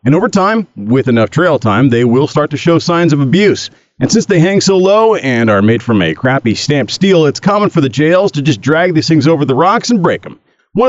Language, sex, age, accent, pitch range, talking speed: English, male, 40-59, American, 130-170 Hz, 255 wpm